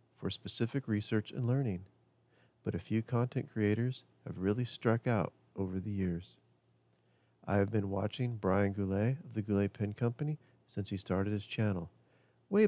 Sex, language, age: male, English, 40-59